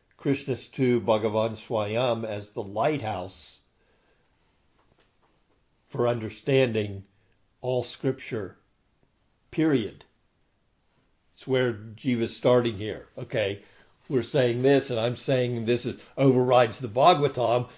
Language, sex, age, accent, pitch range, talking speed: English, male, 60-79, American, 120-150 Hz, 100 wpm